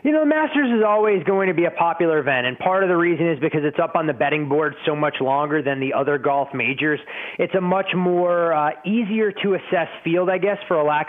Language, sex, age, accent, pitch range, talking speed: English, male, 20-39, American, 145-180 Hz, 245 wpm